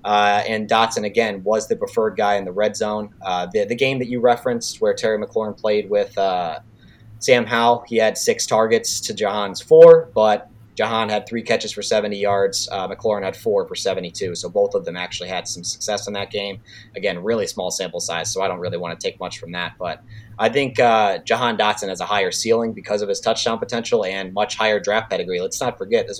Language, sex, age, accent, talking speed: English, male, 30-49, American, 225 wpm